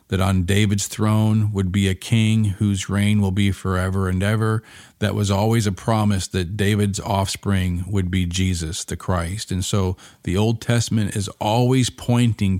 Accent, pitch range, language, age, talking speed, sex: American, 95-110 Hz, English, 40-59, 170 wpm, male